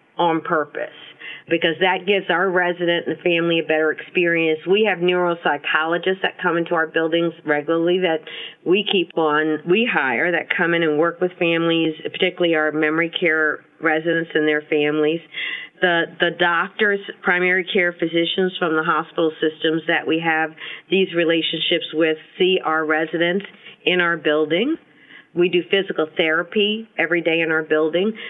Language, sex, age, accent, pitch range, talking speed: English, female, 50-69, American, 155-180 Hz, 155 wpm